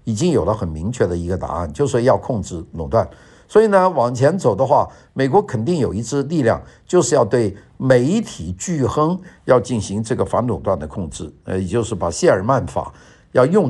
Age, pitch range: 50-69, 105-150 Hz